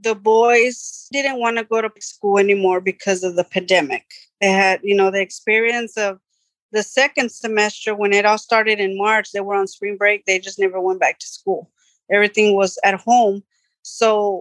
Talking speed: 190 wpm